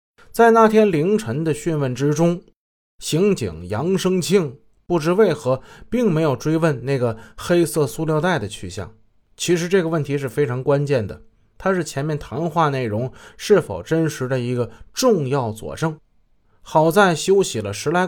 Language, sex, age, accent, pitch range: Chinese, male, 20-39, native, 125-170 Hz